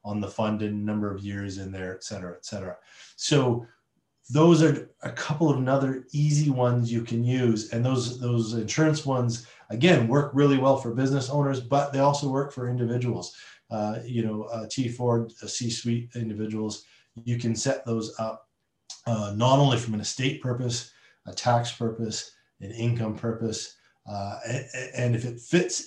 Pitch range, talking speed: 110-125 Hz, 175 wpm